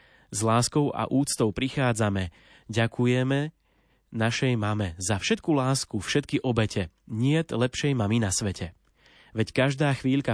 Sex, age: male, 30-49